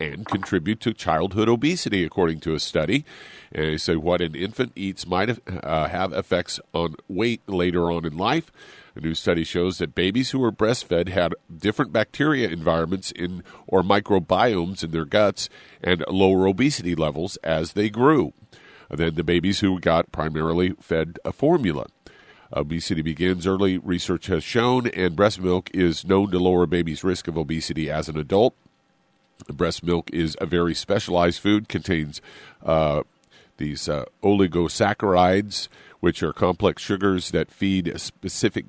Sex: male